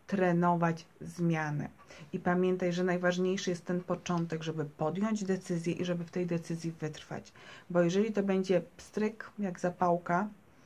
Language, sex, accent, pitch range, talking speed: Polish, female, native, 170-195 Hz, 140 wpm